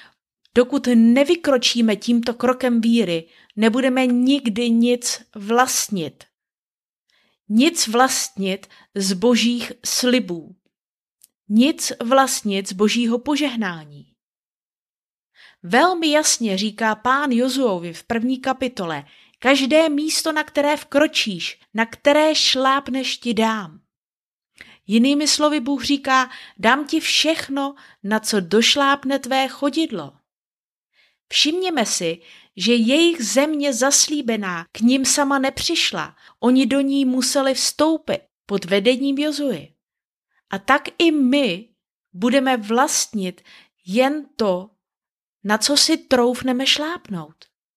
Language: Czech